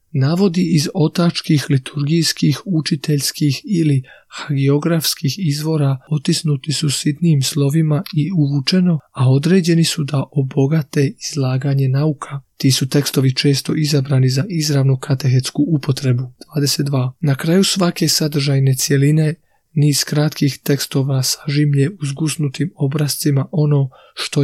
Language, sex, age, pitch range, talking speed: Croatian, male, 40-59, 135-155 Hz, 110 wpm